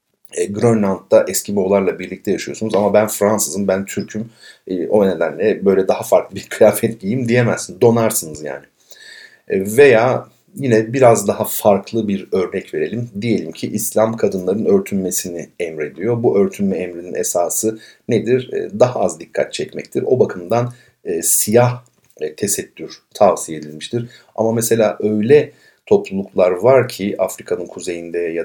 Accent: native